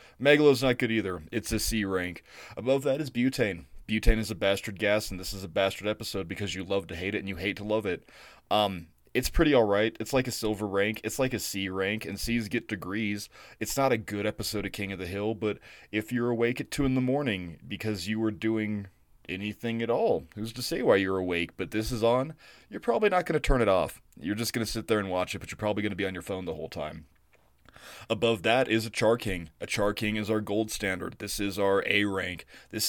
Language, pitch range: English, 100-120 Hz